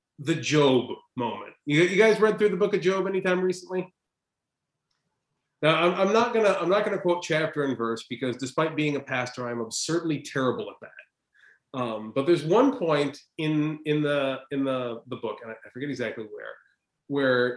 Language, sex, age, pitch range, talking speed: English, male, 30-49, 140-195 Hz, 185 wpm